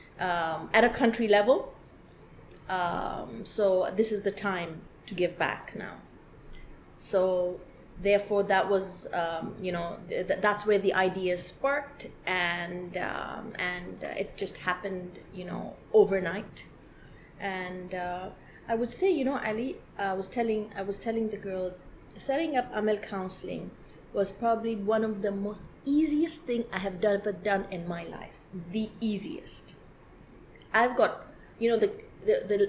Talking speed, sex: 145 wpm, female